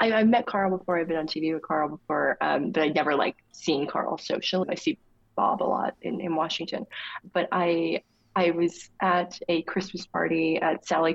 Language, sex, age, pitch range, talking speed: English, female, 20-39, 160-190 Hz, 200 wpm